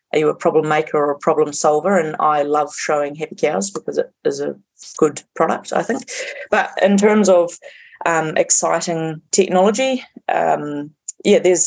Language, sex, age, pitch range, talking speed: English, female, 30-49, 155-190 Hz, 170 wpm